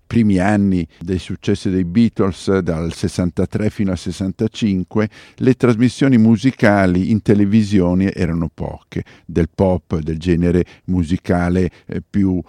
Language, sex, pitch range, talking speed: Italian, male, 90-110 Hz, 115 wpm